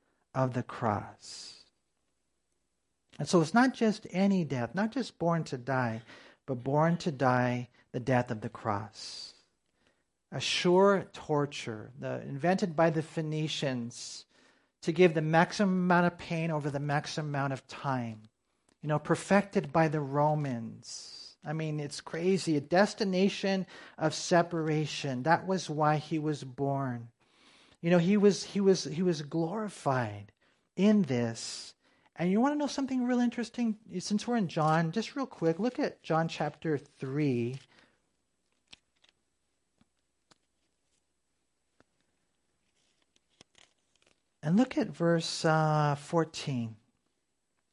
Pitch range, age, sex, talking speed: 135-195 Hz, 50-69, male, 125 wpm